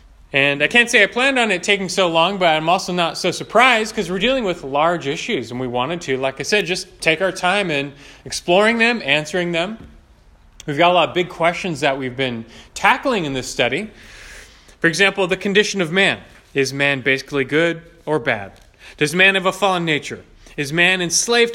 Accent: American